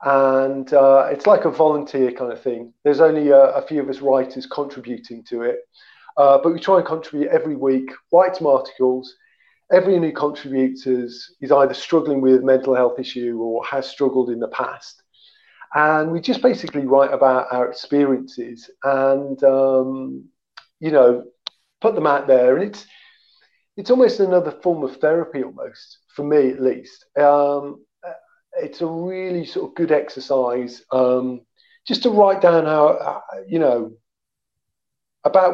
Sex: male